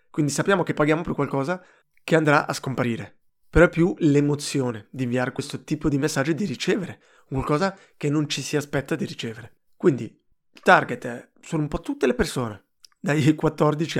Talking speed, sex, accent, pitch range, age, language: 180 wpm, male, native, 125-155 Hz, 20-39, Italian